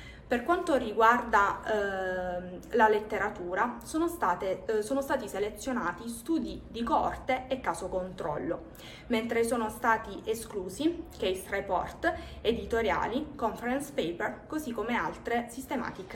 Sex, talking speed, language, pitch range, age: female, 115 wpm, Italian, 205-270 Hz, 20-39